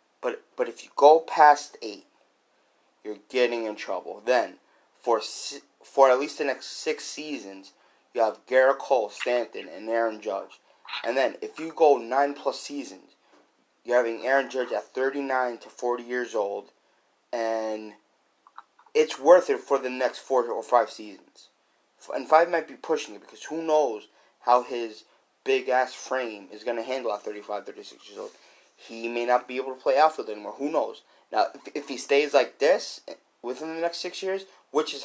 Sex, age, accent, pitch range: male, 30-49, American, 115-155 Hz